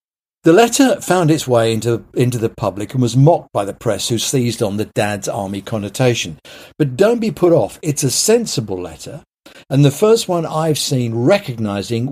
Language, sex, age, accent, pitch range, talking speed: English, male, 50-69, British, 115-150 Hz, 190 wpm